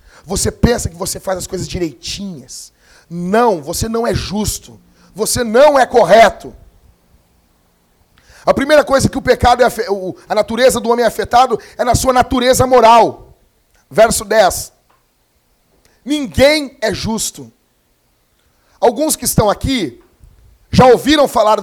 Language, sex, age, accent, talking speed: Portuguese, male, 40-59, Brazilian, 130 wpm